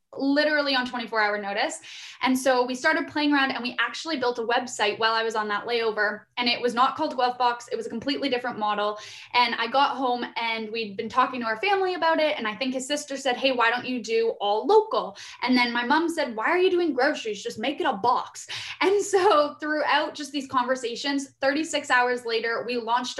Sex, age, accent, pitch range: female, 10-29, American, 220-270 Hz